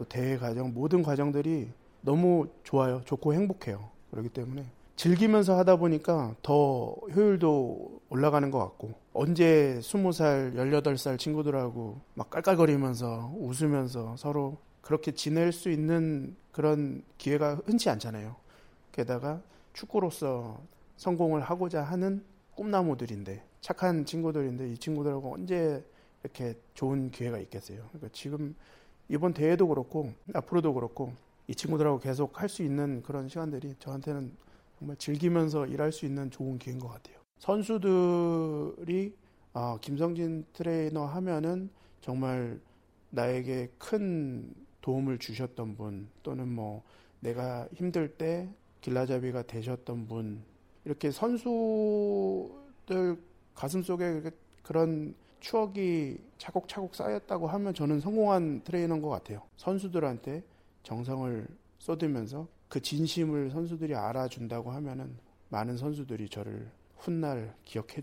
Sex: male